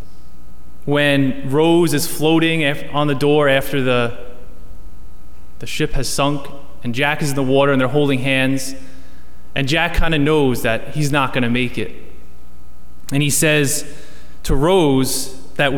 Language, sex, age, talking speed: English, male, 20-39, 155 wpm